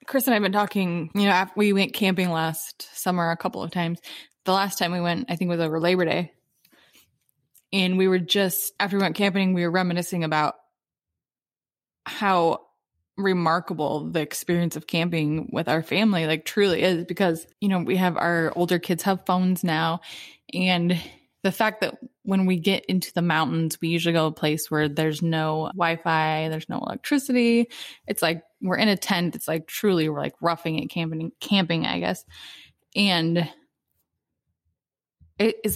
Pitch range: 160-190 Hz